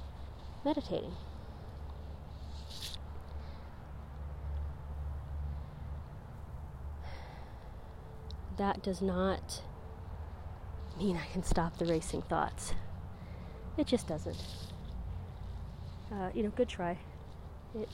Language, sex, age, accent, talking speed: English, female, 30-49, American, 65 wpm